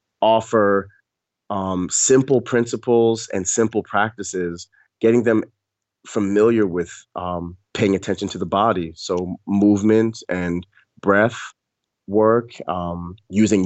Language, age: English, 30-49